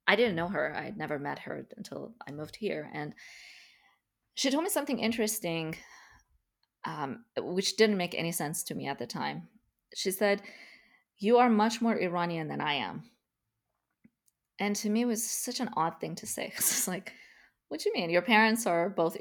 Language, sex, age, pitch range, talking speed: English, female, 20-39, 165-215 Hz, 190 wpm